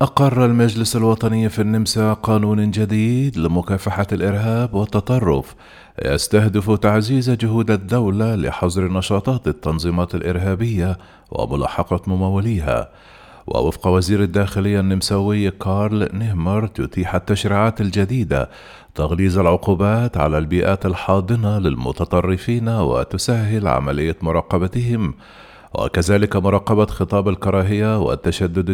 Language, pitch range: Arabic, 90-110 Hz